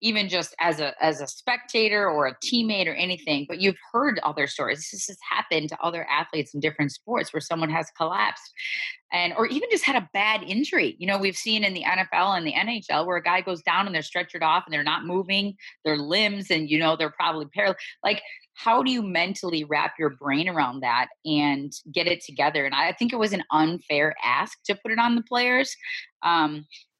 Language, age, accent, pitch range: English, 20-39, American, 150-190 Hz